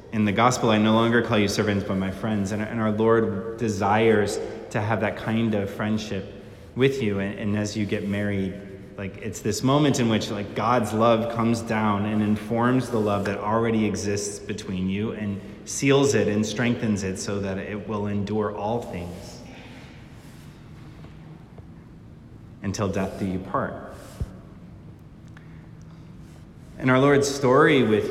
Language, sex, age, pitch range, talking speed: English, male, 30-49, 100-115 Hz, 155 wpm